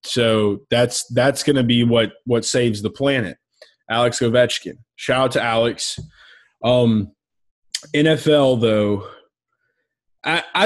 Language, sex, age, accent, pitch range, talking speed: English, male, 20-39, American, 115-150 Hz, 120 wpm